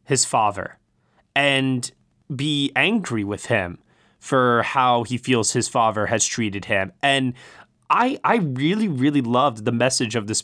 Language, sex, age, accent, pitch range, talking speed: English, male, 20-39, American, 110-145 Hz, 150 wpm